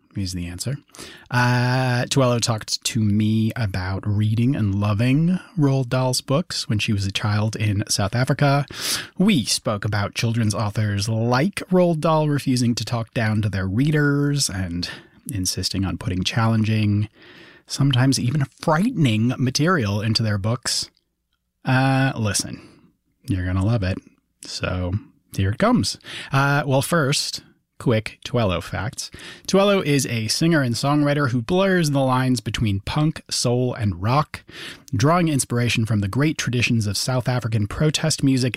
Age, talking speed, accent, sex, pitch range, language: 30-49, 145 wpm, American, male, 110-145 Hz, English